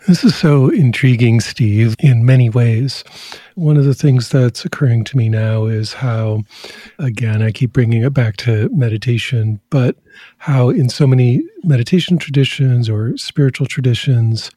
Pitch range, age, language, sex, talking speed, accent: 115-140 Hz, 50-69, English, male, 150 wpm, American